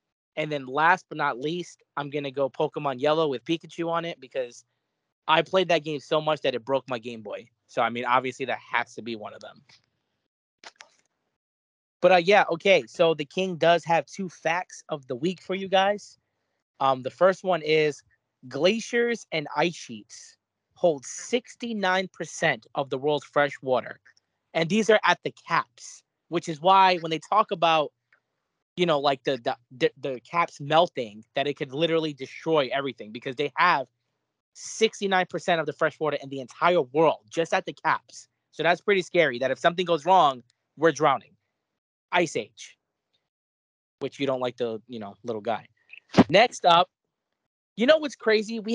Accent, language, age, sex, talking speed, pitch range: American, English, 20-39, male, 180 wpm, 135-185 Hz